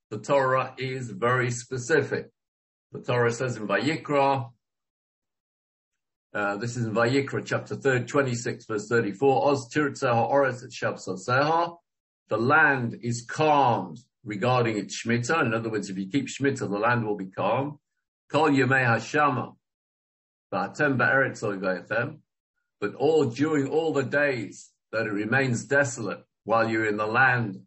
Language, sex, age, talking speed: English, male, 50-69, 120 wpm